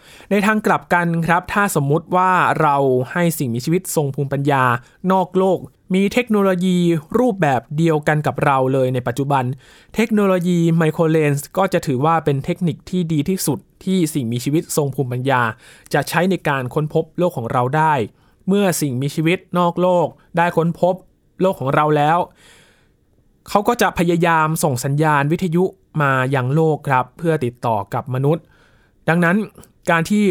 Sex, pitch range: male, 135-175 Hz